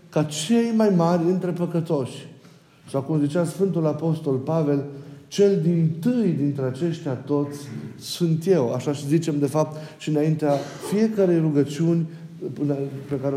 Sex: male